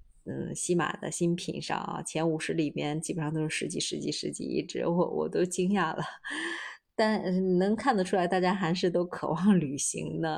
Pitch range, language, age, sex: 160-195 Hz, Chinese, 20-39, female